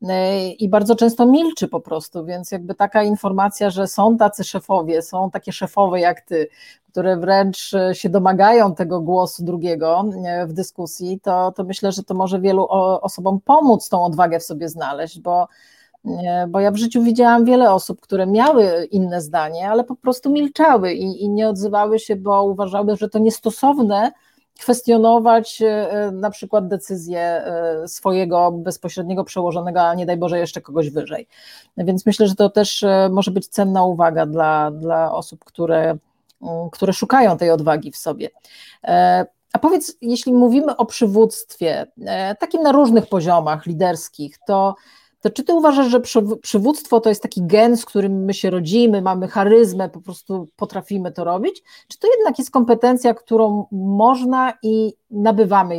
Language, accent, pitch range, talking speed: Polish, native, 175-225 Hz, 155 wpm